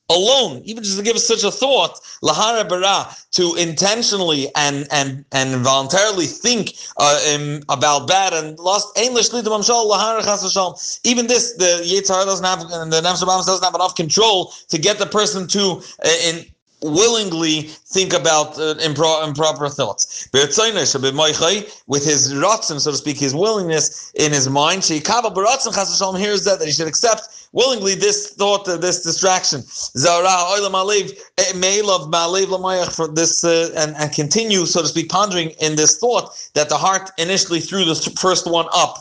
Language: English